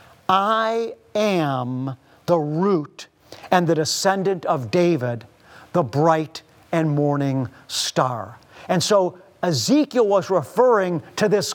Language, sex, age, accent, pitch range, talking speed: English, male, 50-69, American, 155-205 Hz, 110 wpm